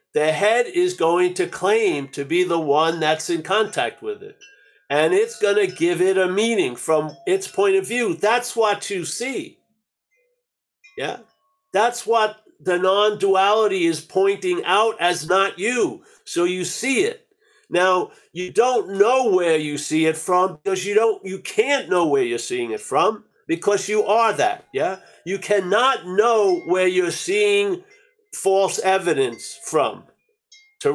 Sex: male